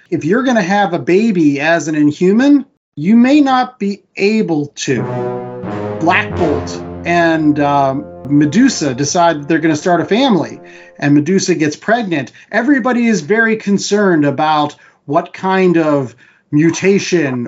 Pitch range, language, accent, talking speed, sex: 145-185 Hz, English, American, 140 wpm, male